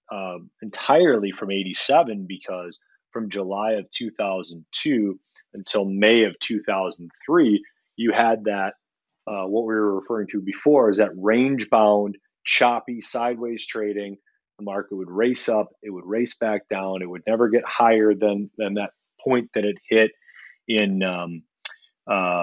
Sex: male